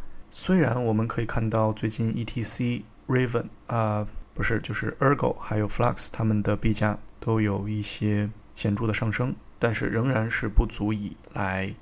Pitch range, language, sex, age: 105-125 Hz, Chinese, male, 20-39